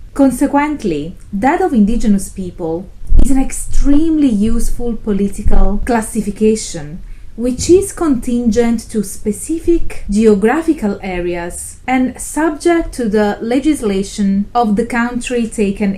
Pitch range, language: 200-270 Hz, English